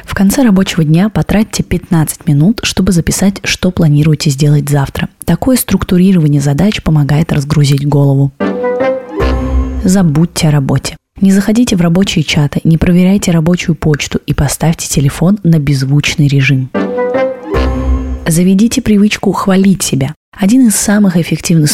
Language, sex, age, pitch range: Russian, female, 20-39, 145-190 Hz